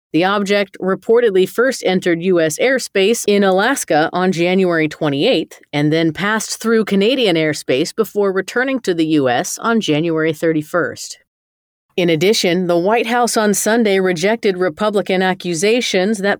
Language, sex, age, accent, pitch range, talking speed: English, female, 30-49, American, 170-205 Hz, 135 wpm